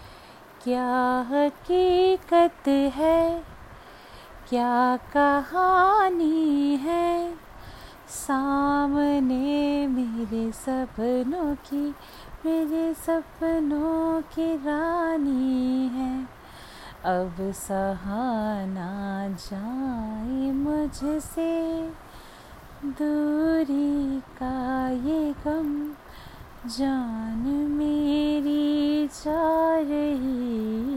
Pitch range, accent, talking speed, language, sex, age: 230-300 Hz, native, 50 wpm, Hindi, female, 30-49